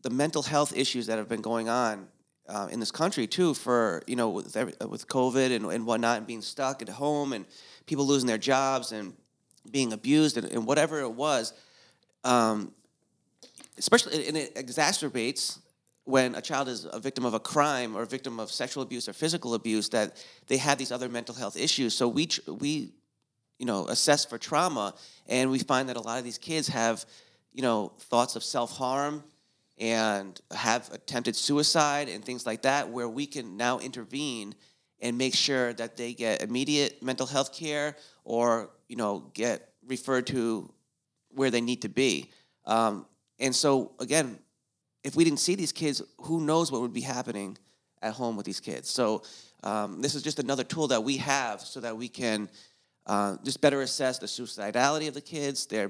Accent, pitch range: American, 115-145 Hz